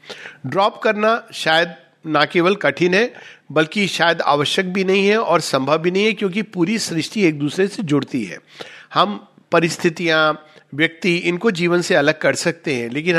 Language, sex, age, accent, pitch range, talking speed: Hindi, male, 50-69, native, 155-220 Hz, 170 wpm